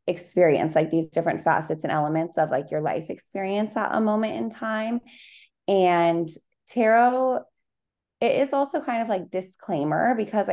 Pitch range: 165-195 Hz